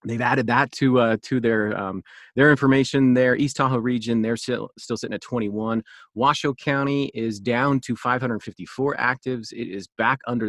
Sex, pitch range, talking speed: male, 100-125 Hz, 175 wpm